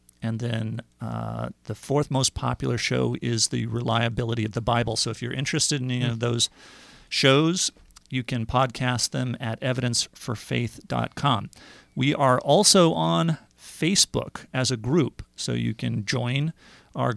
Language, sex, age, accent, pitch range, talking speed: English, male, 40-59, American, 115-135 Hz, 145 wpm